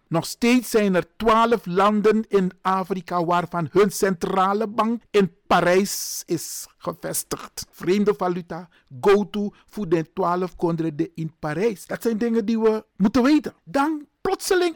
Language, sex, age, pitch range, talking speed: Dutch, male, 50-69, 170-235 Hz, 135 wpm